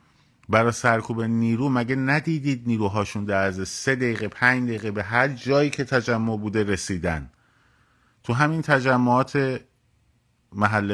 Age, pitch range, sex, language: 50-69, 115-135 Hz, male, Persian